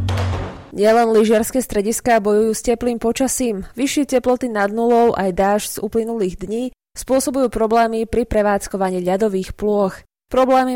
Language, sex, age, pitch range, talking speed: Slovak, female, 20-39, 195-240 Hz, 130 wpm